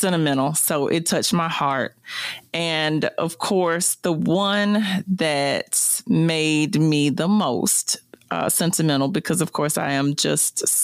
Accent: American